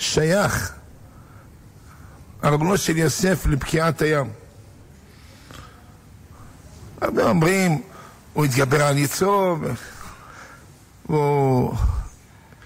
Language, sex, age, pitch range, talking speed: Hebrew, male, 60-79, 125-180 Hz, 60 wpm